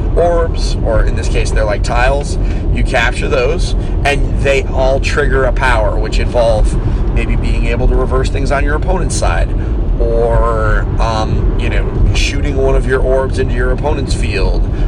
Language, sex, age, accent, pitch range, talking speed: English, male, 30-49, American, 95-120 Hz, 170 wpm